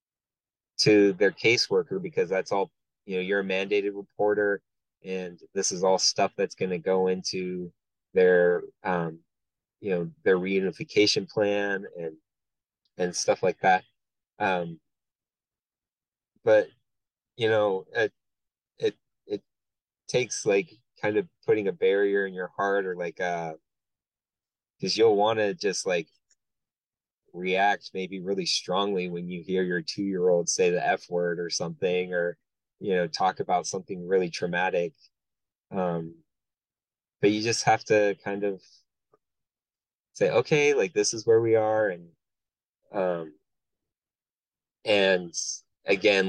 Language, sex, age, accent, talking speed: English, male, 20-39, American, 130 wpm